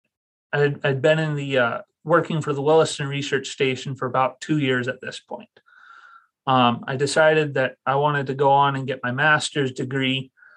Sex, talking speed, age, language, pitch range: male, 185 wpm, 30-49, English, 130-155 Hz